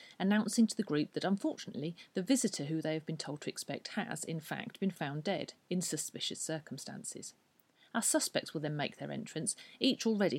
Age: 40-59